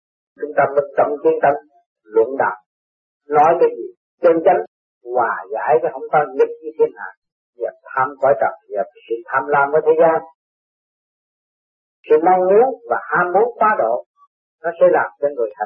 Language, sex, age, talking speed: Vietnamese, male, 50-69, 85 wpm